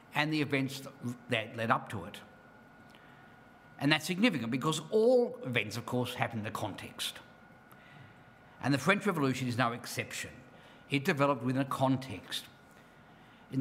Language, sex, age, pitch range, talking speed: English, male, 50-69, 125-160 Hz, 145 wpm